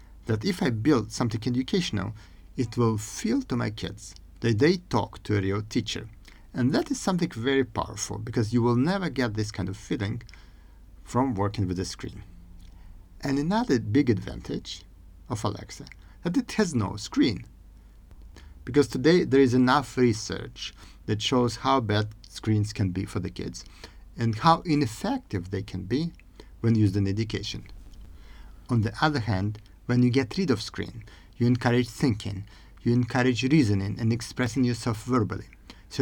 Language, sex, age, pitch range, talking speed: English, male, 50-69, 95-130 Hz, 160 wpm